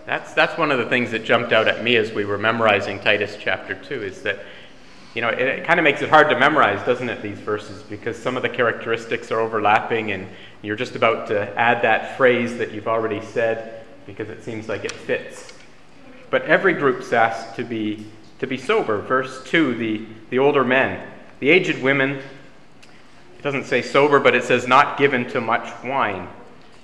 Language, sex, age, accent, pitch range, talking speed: English, male, 30-49, American, 110-135 Hz, 200 wpm